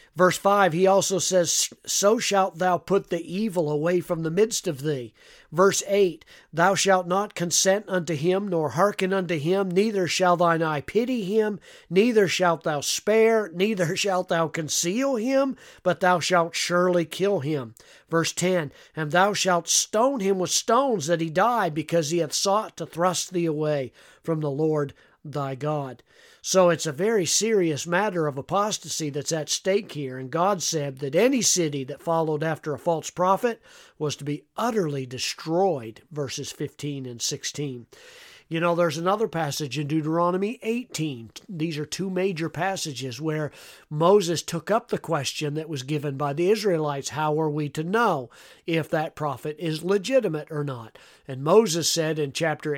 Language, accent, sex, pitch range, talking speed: English, American, male, 150-195 Hz, 170 wpm